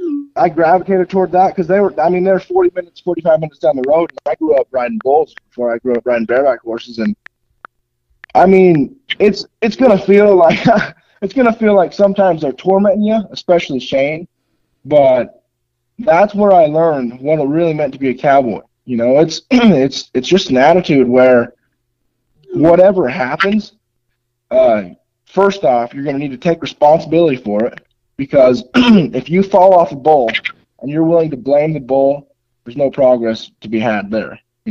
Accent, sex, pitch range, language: American, male, 120-180 Hz, English